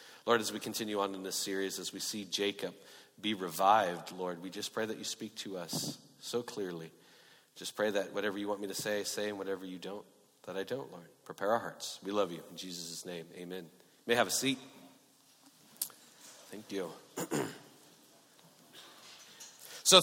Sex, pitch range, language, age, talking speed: male, 95-140 Hz, English, 40-59, 185 wpm